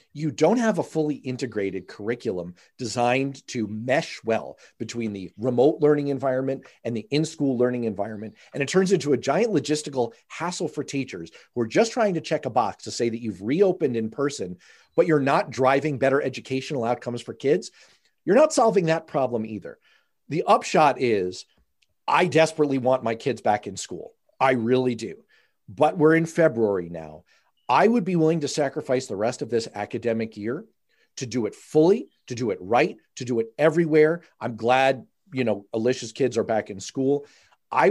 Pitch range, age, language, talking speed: 115-150 Hz, 40-59, English, 180 wpm